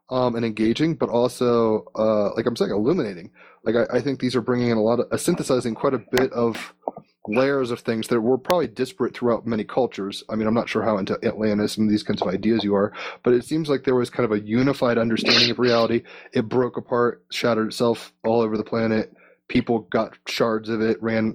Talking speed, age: 225 wpm, 30-49